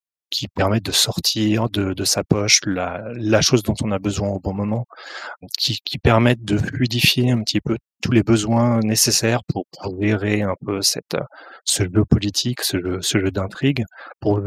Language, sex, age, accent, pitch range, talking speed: French, male, 30-49, French, 100-120 Hz, 185 wpm